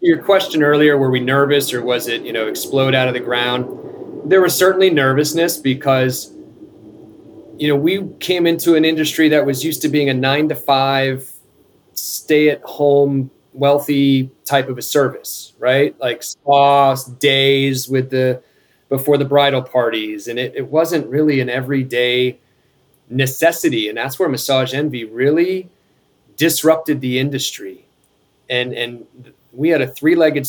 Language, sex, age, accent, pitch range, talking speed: English, male, 30-49, American, 125-150 Hz, 155 wpm